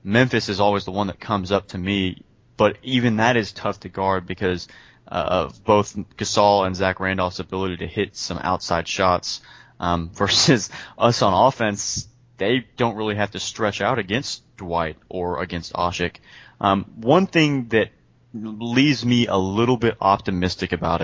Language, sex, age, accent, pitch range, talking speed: English, male, 20-39, American, 95-115 Hz, 170 wpm